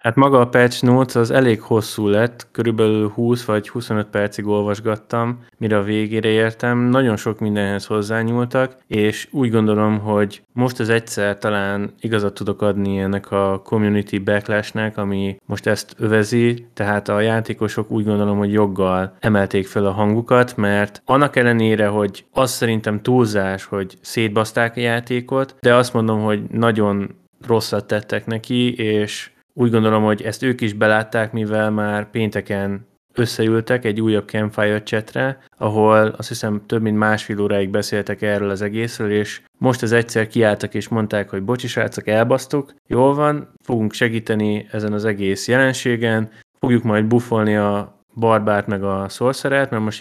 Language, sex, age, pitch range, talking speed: Hungarian, male, 20-39, 105-120 Hz, 155 wpm